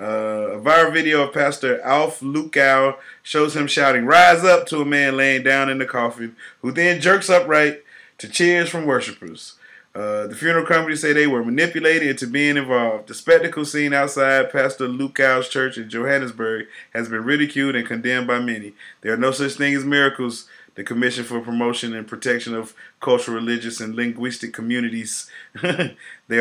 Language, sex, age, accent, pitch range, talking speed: English, male, 30-49, American, 115-145 Hz, 175 wpm